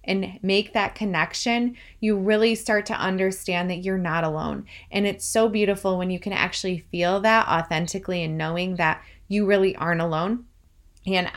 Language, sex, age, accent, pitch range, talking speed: English, female, 20-39, American, 175-205 Hz, 170 wpm